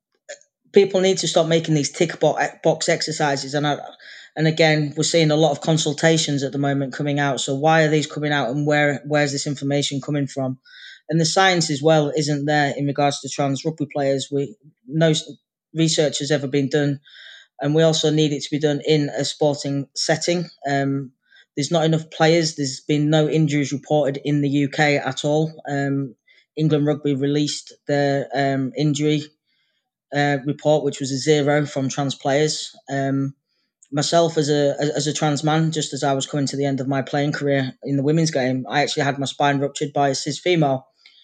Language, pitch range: English, 140-155 Hz